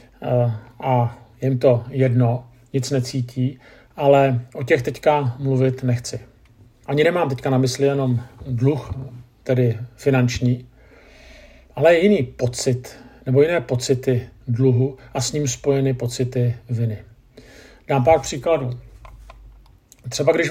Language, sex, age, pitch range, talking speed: Czech, male, 50-69, 120-140 Hz, 115 wpm